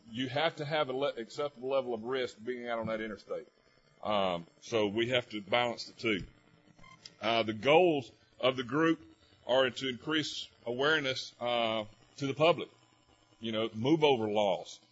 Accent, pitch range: American, 110-135 Hz